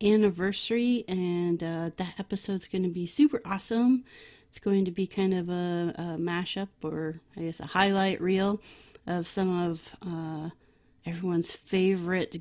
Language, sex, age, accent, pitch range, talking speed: English, female, 30-49, American, 175-210 Hz, 150 wpm